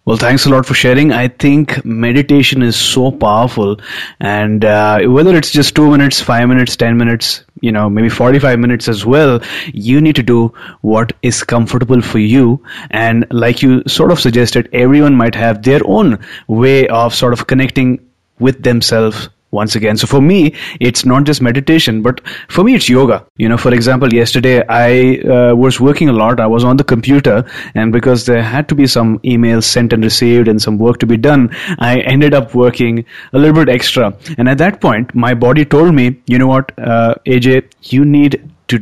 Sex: male